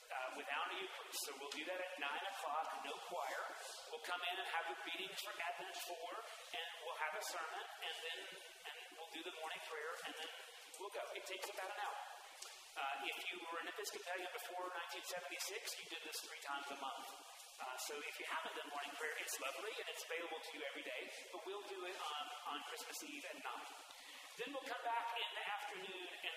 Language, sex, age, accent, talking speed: English, male, 40-59, American, 215 wpm